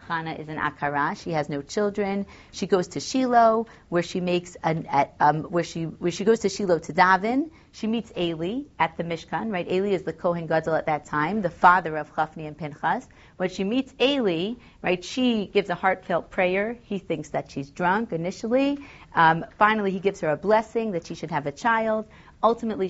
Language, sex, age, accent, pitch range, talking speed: English, female, 40-59, American, 170-225 Hz, 200 wpm